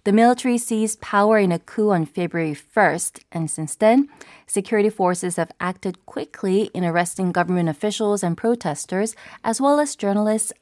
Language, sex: Korean, female